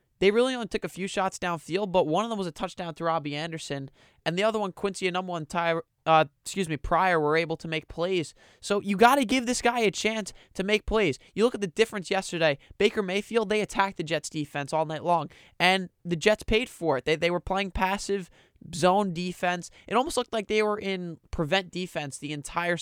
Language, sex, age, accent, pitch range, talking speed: English, male, 20-39, American, 160-205 Hz, 225 wpm